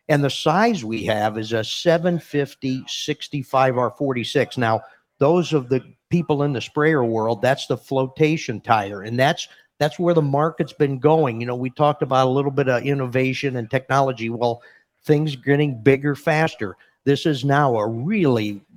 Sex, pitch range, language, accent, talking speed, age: male, 125-150 Hz, English, American, 165 wpm, 50-69